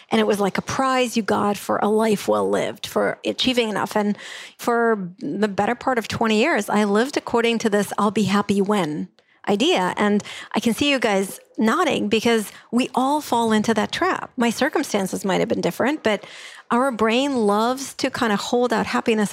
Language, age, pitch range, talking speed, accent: English, 40-59, 205-240 Hz, 195 wpm, American